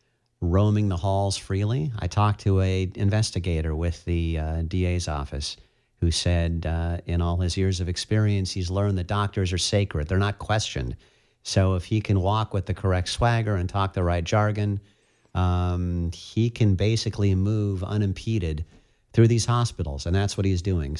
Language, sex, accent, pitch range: English, male, American, 85-105 Hz